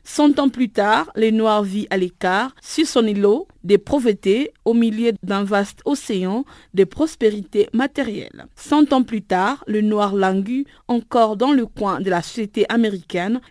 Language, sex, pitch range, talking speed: French, female, 200-255 Hz, 165 wpm